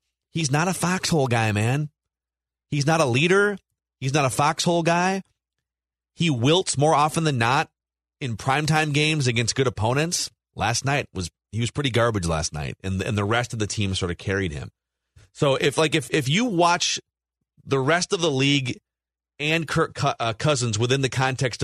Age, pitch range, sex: 30-49, 100-140 Hz, male